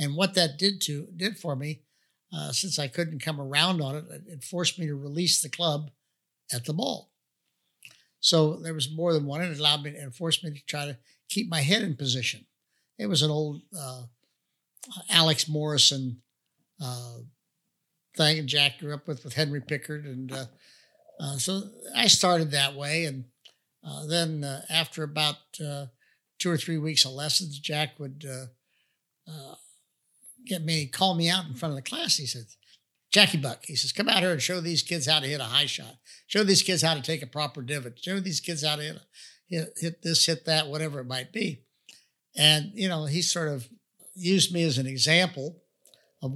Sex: male